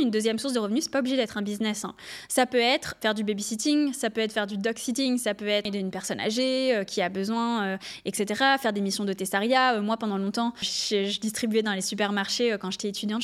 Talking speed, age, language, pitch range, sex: 255 wpm, 20-39, French, 205-250 Hz, female